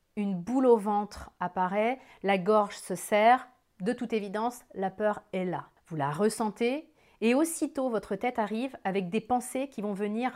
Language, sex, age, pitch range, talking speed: French, female, 30-49, 200-245 Hz, 175 wpm